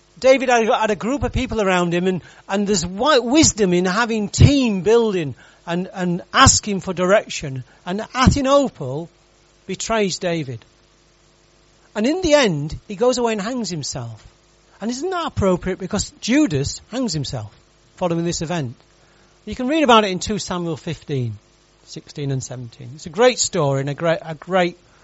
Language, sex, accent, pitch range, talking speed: English, male, British, 140-215 Hz, 160 wpm